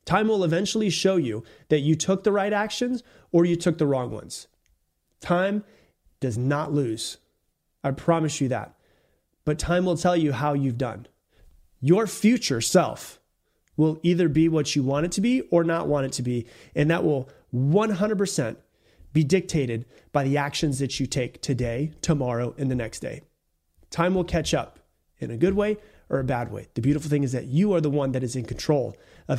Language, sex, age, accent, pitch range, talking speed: English, male, 30-49, American, 135-180 Hz, 195 wpm